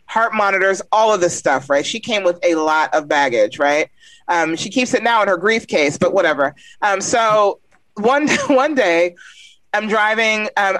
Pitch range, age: 180-245 Hz, 30-49